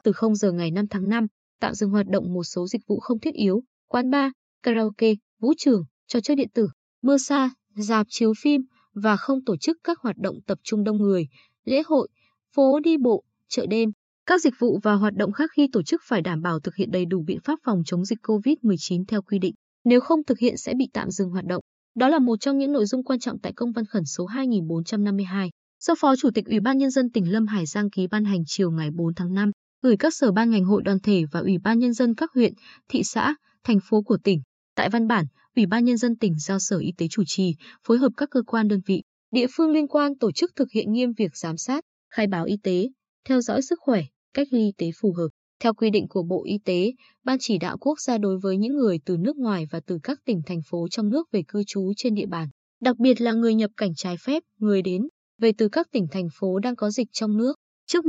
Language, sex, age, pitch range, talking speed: Vietnamese, female, 20-39, 195-255 Hz, 250 wpm